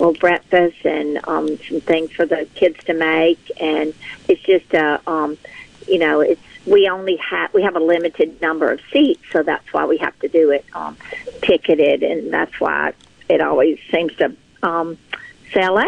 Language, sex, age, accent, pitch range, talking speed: English, female, 50-69, American, 160-180 Hz, 185 wpm